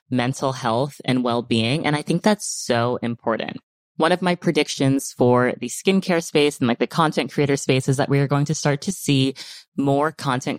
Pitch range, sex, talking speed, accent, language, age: 125-155 Hz, female, 200 wpm, American, English, 20-39